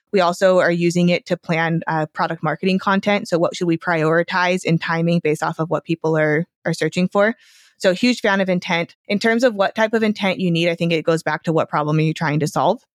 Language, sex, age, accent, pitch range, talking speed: English, female, 20-39, American, 160-185 Hz, 250 wpm